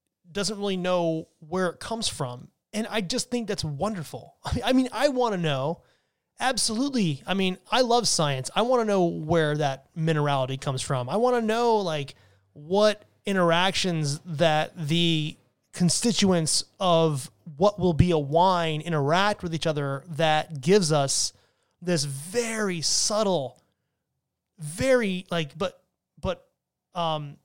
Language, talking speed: English, 140 wpm